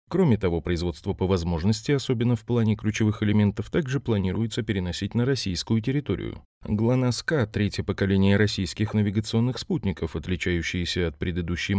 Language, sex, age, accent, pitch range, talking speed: Russian, male, 30-49, native, 90-120 Hz, 125 wpm